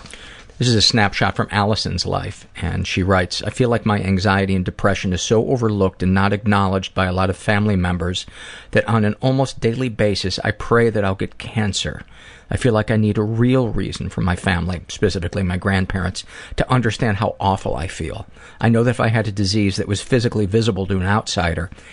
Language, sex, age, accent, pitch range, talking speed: English, male, 50-69, American, 95-110 Hz, 210 wpm